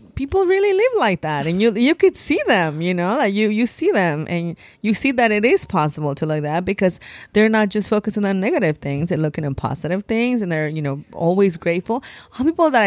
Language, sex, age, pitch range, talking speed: English, female, 30-49, 160-230 Hz, 235 wpm